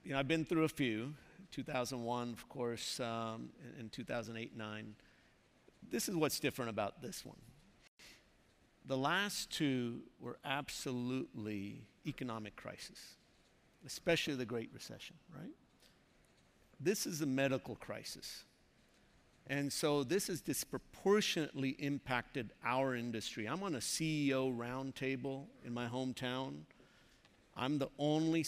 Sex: male